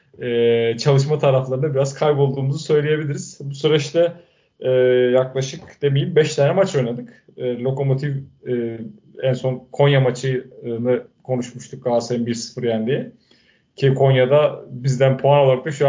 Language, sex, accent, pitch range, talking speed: Turkish, male, native, 125-145 Hz, 125 wpm